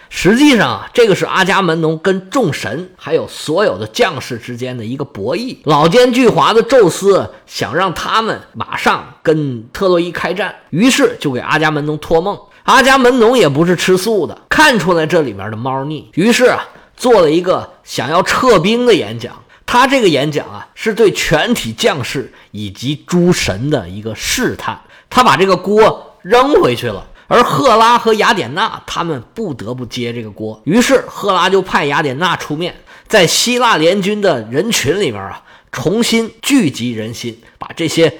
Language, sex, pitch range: Chinese, male, 145-235 Hz